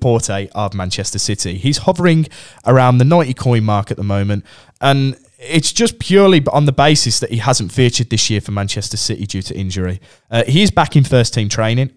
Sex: male